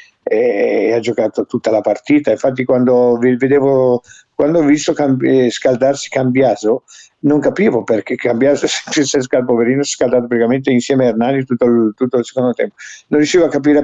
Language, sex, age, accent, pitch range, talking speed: Italian, male, 50-69, native, 115-145 Hz, 145 wpm